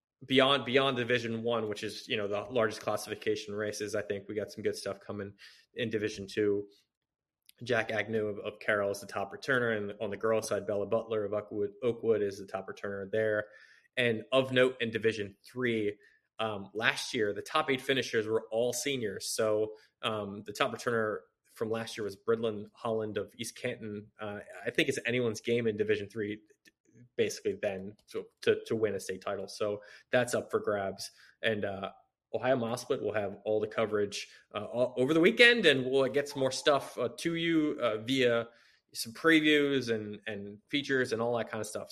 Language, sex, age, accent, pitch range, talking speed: English, male, 20-39, American, 105-135 Hz, 195 wpm